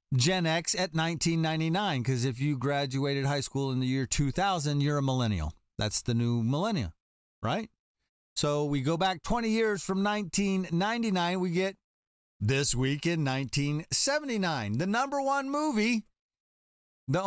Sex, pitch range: male, 110-175 Hz